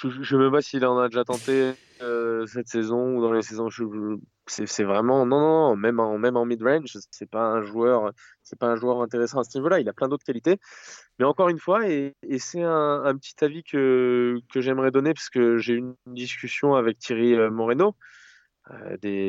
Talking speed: 210 wpm